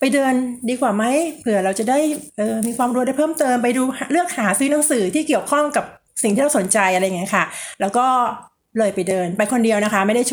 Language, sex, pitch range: Thai, female, 195-255 Hz